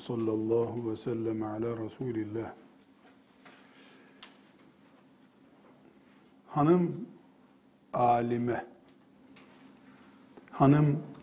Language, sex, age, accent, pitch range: Turkish, male, 50-69, native, 125-150 Hz